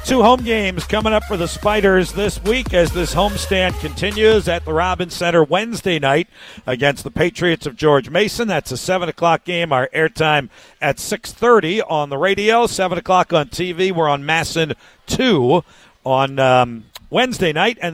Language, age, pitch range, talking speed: English, 50-69, 140-185 Hz, 170 wpm